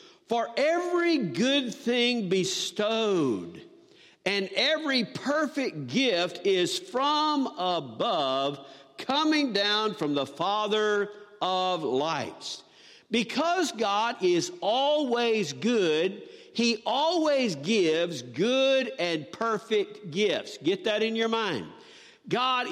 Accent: American